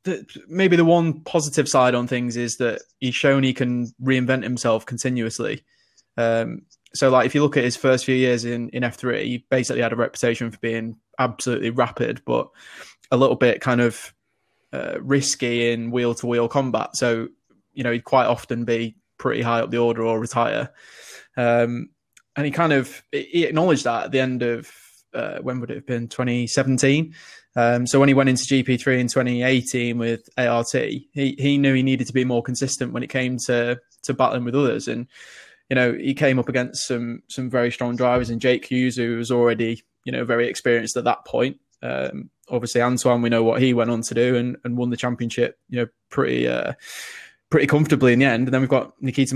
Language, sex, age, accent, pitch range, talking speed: English, male, 20-39, British, 120-130 Hz, 205 wpm